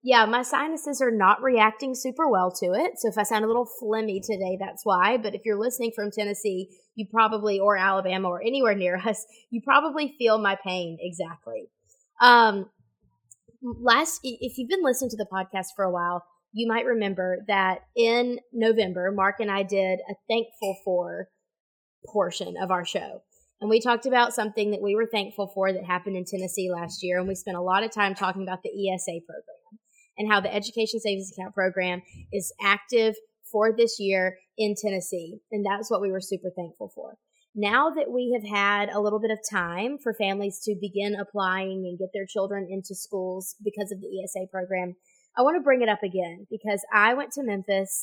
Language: English